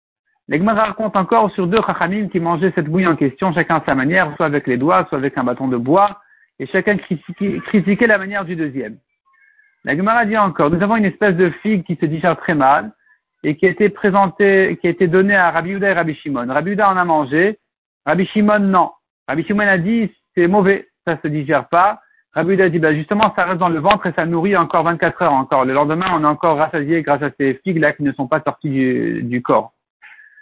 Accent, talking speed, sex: French, 225 wpm, male